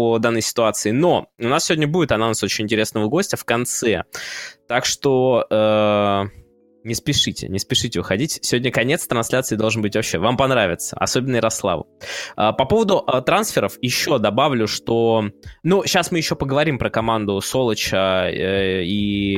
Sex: male